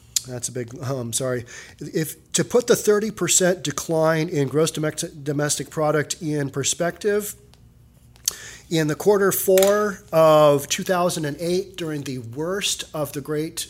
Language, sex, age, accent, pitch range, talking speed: English, male, 40-59, American, 135-170 Hz, 135 wpm